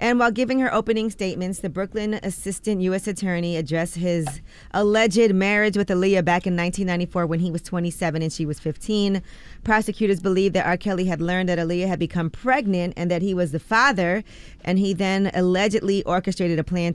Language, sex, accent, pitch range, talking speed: English, female, American, 165-195 Hz, 190 wpm